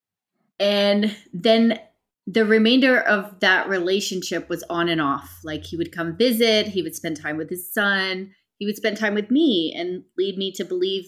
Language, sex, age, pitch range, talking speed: English, female, 30-49, 165-210 Hz, 185 wpm